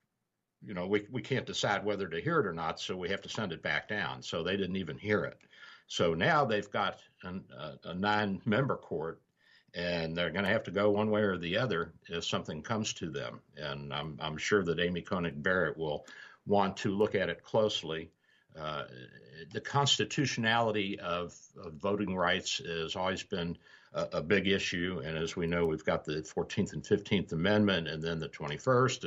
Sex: male